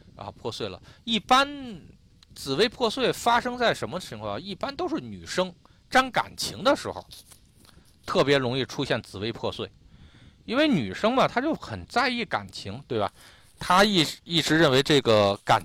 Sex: male